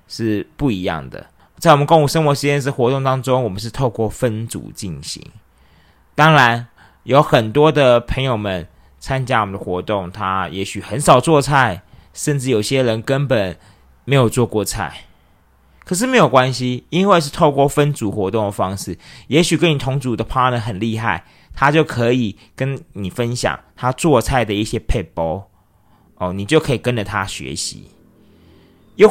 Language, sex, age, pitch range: Chinese, male, 30-49, 100-145 Hz